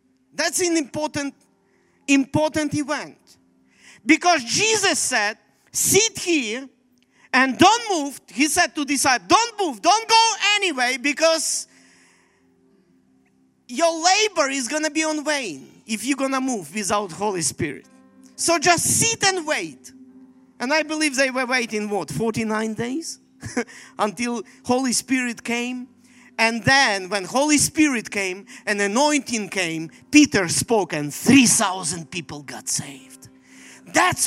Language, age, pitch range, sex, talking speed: English, 40-59, 185-280 Hz, male, 130 wpm